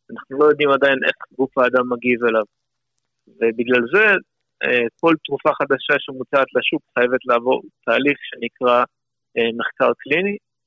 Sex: male